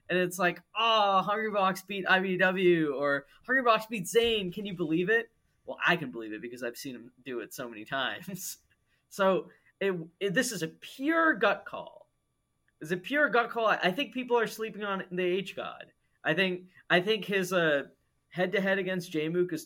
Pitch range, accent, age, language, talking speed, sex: 150-195 Hz, American, 20-39, English, 190 wpm, male